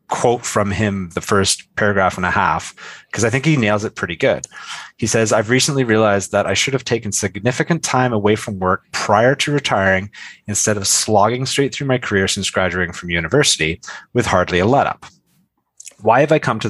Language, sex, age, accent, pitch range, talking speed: English, male, 30-49, American, 95-125 Hz, 200 wpm